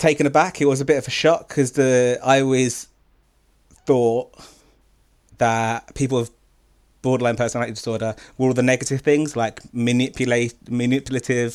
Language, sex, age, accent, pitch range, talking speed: English, male, 30-49, British, 110-130 Hz, 145 wpm